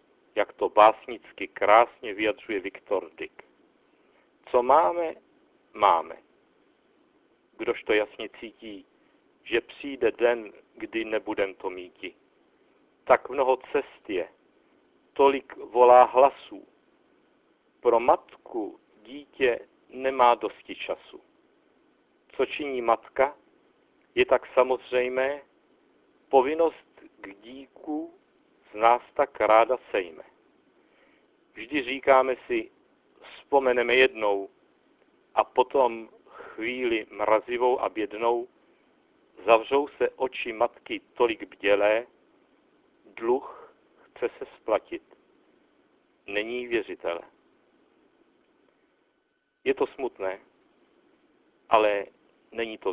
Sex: male